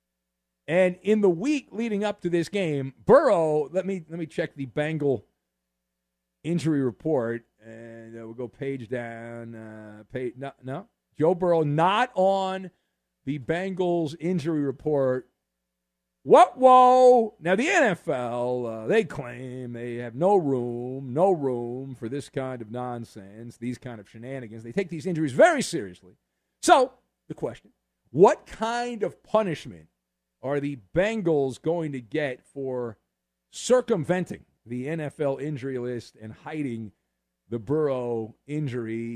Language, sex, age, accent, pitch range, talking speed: English, male, 50-69, American, 120-185 Hz, 140 wpm